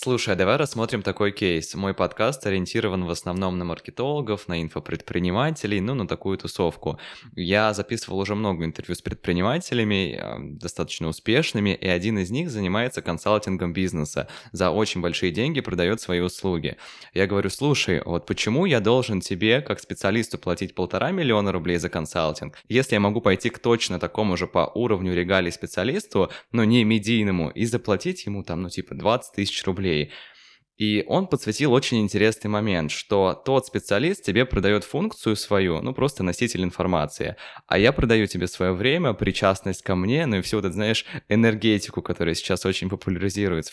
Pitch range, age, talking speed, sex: 90-115 Hz, 20-39, 160 wpm, male